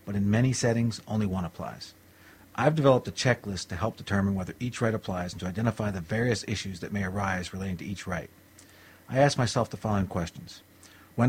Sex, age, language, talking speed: male, 40-59, English, 200 wpm